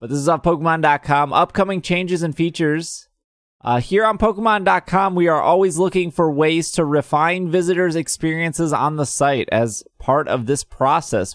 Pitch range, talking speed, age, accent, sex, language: 125-175 Hz, 165 wpm, 20-39, American, male, English